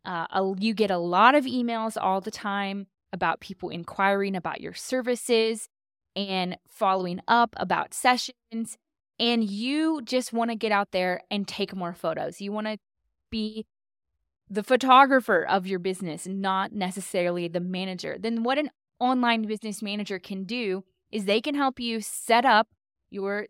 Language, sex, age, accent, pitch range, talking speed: English, female, 20-39, American, 195-245 Hz, 160 wpm